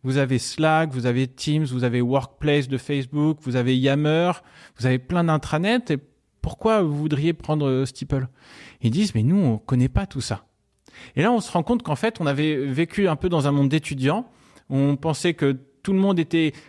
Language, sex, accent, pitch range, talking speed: French, male, French, 130-175 Hz, 210 wpm